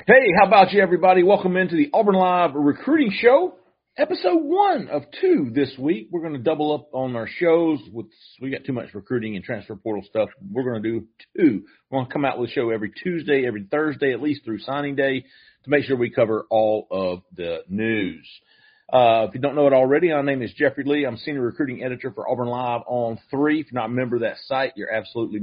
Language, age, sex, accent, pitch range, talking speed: English, 40-59, male, American, 120-155 Hz, 230 wpm